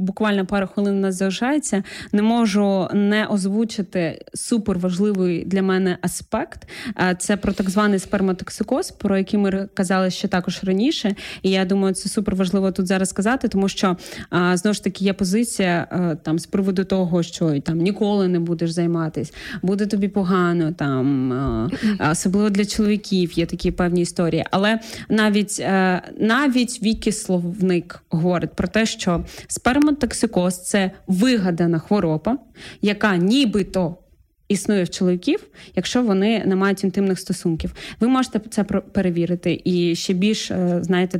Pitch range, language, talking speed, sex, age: 180-210 Hz, Ukrainian, 140 wpm, female, 20-39